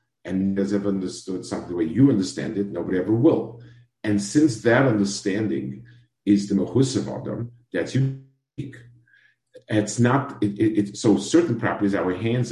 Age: 50-69